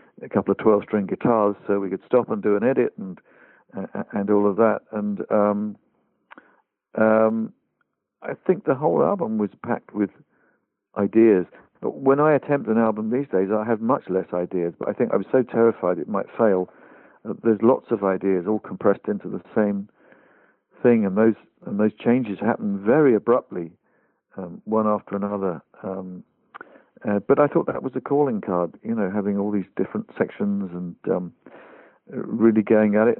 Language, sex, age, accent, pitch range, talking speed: English, male, 50-69, British, 100-115 Hz, 180 wpm